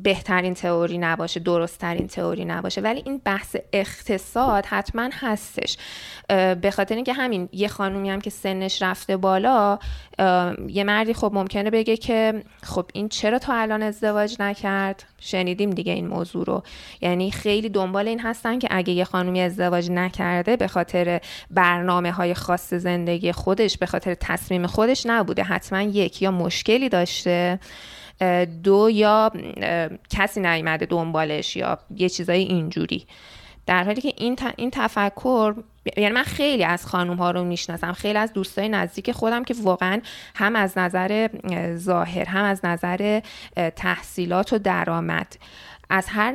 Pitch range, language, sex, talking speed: 180-215 Hz, Persian, female, 140 wpm